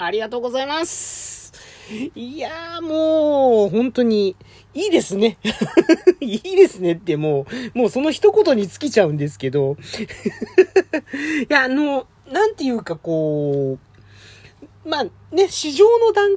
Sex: male